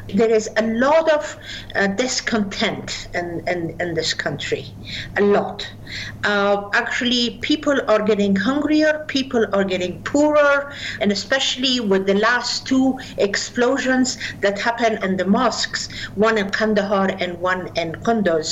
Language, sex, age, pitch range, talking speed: English, female, 50-69, 195-255 Hz, 140 wpm